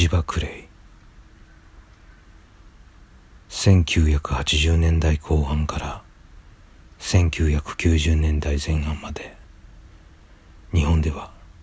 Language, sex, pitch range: Japanese, male, 80-85 Hz